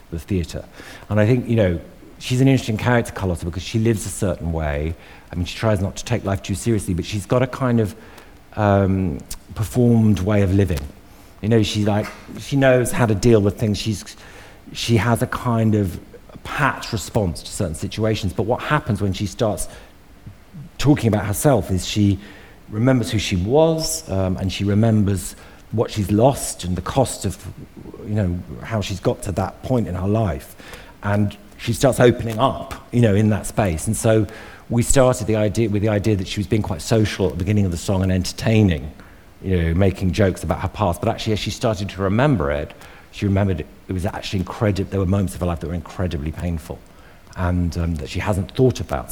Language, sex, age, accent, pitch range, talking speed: English, male, 50-69, British, 95-115 Hz, 210 wpm